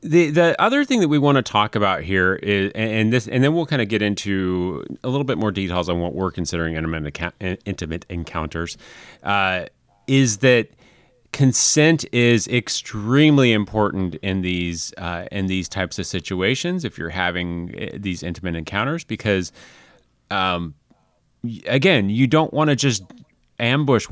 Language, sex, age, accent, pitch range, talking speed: English, male, 30-49, American, 95-125 Hz, 155 wpm